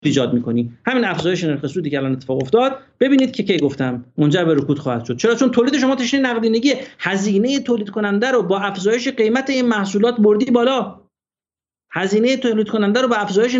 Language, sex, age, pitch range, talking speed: Persian, male, 50-69, 150-230 Hz, 180 wpm